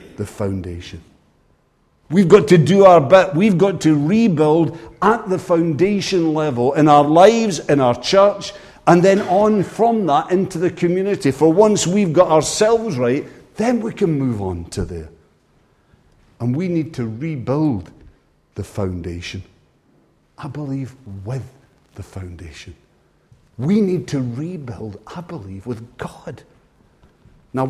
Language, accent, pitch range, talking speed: English, British, 120-195 Hz, 140 wpm